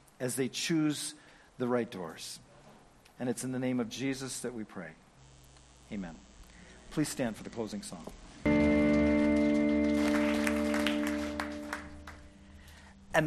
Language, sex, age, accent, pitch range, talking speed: English, male, 50-69, American, 120-175 Hz, 110 wpm